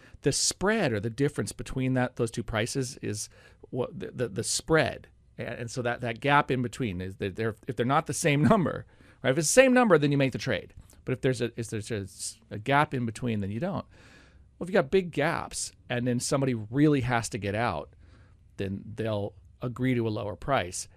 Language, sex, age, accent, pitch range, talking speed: English, male, 40-59, American, 105-140 Hz, 225 wpm